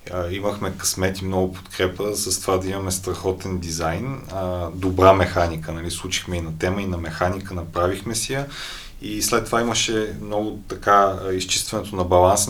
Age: 30-49